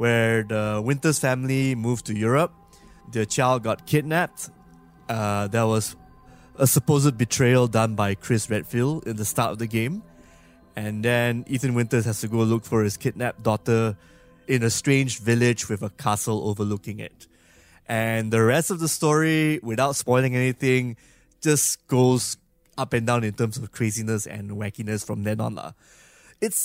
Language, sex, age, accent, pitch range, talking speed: English, male, 20-39, Malaysian, 110-140 Hz, 165 wpm